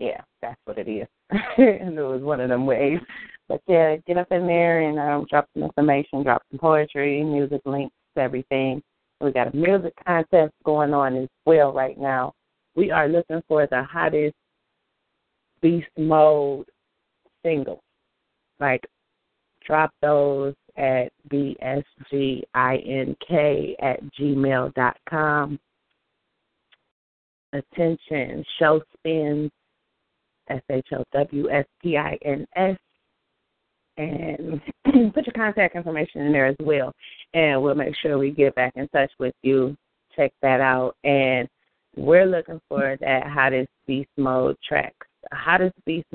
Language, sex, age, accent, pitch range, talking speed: English, female, 30-49, American, 130-155 Hz, 120 wpm